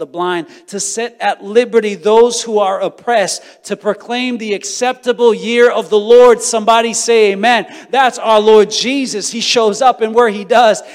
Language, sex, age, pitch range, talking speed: English, male, 40-59, 175-235 Hz, 175 wpm